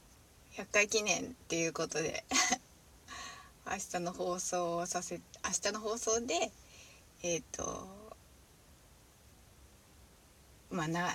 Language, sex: Japanese, female